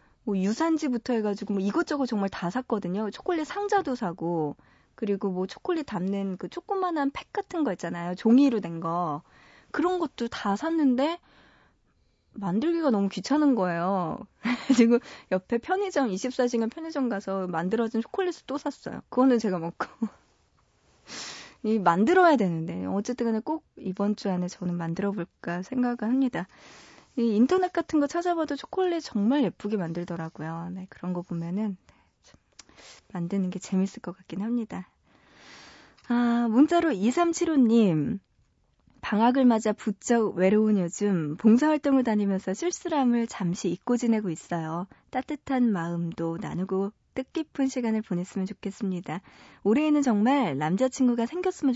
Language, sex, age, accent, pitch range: Korean, female, 20-39, native, 180-265 Hz